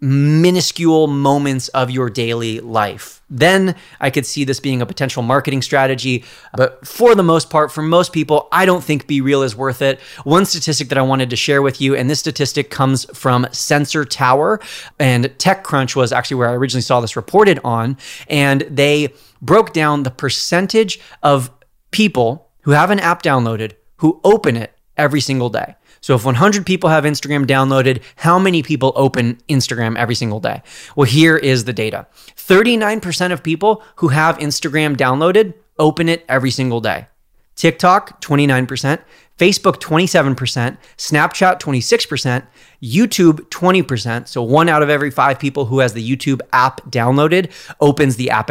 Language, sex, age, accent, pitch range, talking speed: English, male, 30-49, American, 130-165 Hz, 165 wpm